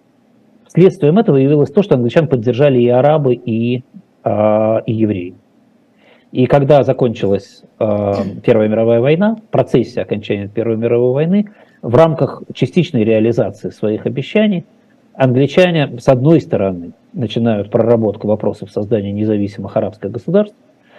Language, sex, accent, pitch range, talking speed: Russian, male, native, 110-155 Hz, 115 wpm